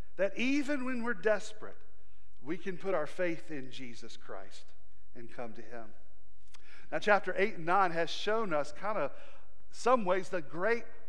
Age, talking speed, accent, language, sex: 40-59, 170 wpm, American, English, male